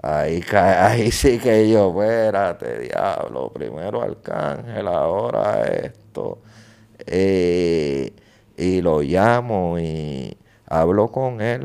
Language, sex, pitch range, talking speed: English, male, 95-125 Hz, 105 wpm